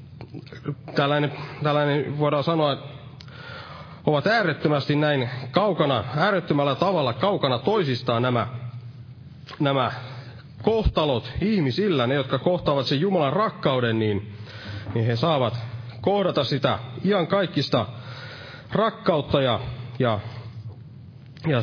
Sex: male